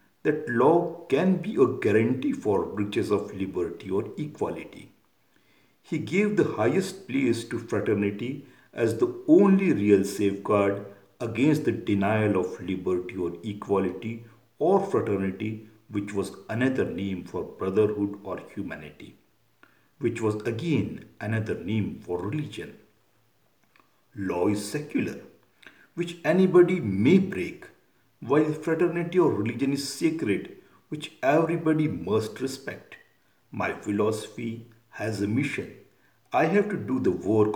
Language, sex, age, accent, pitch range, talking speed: Hindi, male, 50-69, native, 100-150 Hz, 120 wpm